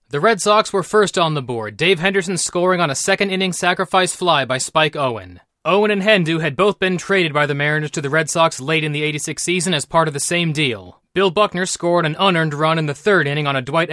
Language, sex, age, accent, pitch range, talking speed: English, male, 30-49, American, 145-195 Hz, 245 wpm